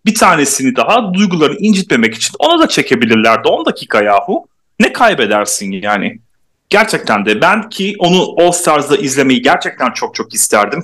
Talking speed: 150 wpm